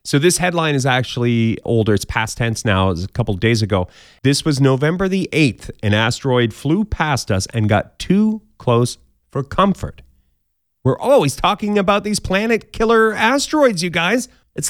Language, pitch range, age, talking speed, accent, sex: English, 105-160 Hz, 30-49, 180 wpm, American, male